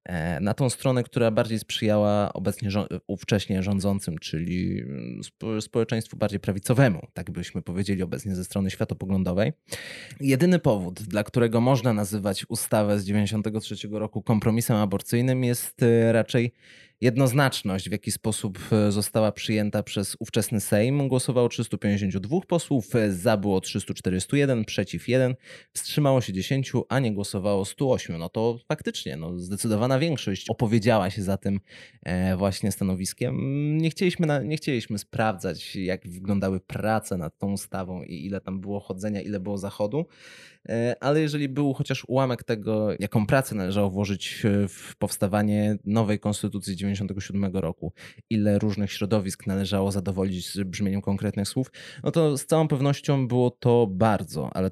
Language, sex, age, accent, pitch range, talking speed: Polish, male, 20-39, native, 100-125 Hz, 135 wpm